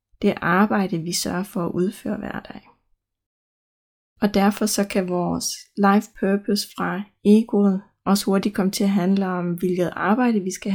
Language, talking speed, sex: Danish, 160 wpm, female